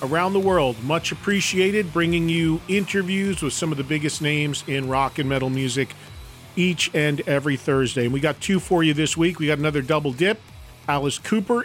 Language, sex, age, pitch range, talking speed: English, male, 40-59, 140-185 Hz, 195 wpm